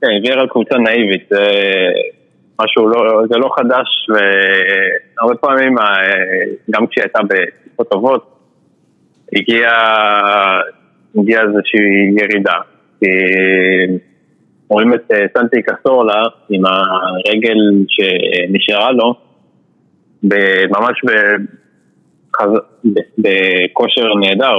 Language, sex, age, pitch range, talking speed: English, male, 20-39, 100-115 Hz, 35 wpm